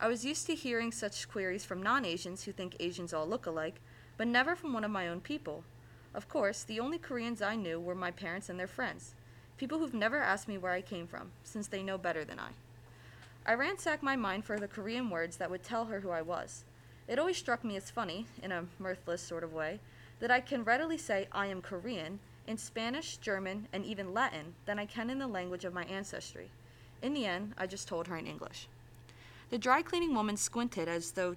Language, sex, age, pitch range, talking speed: English, female, 20-39, 170-230 Hz, 220 wpm